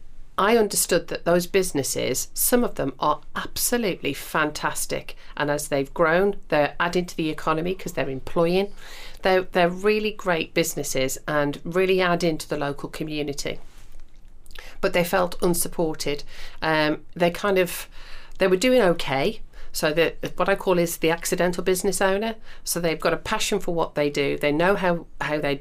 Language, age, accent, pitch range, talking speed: English, 40-59, British, 145-185 Hz, 165 wpm